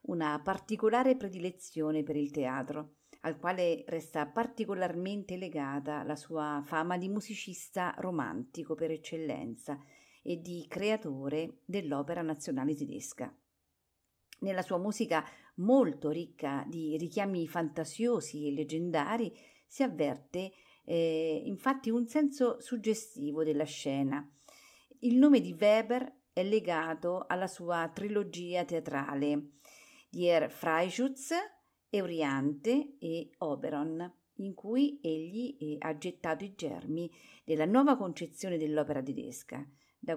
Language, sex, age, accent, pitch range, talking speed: Italian, female, 50-69, native, 155-220 Hz, 110 wpm